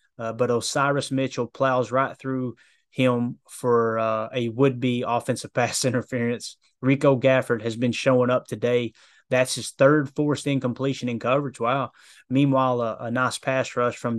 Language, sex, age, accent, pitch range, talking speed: English, male, 20-39, American, 120-135 Hz, 155 wpm